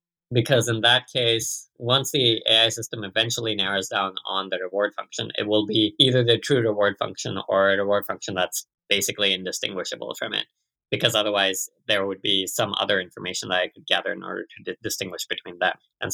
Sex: male